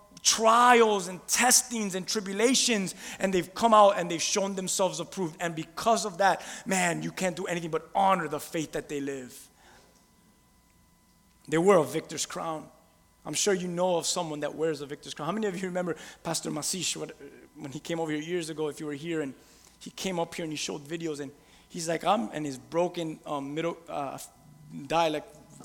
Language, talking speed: English, 195 wpm